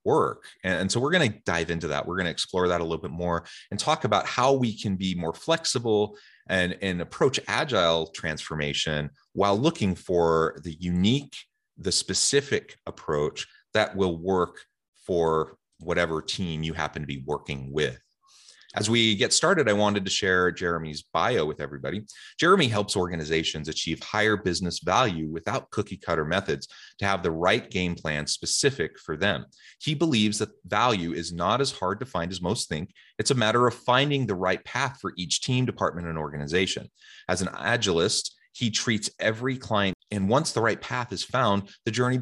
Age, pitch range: 30-49, 85-115 Hz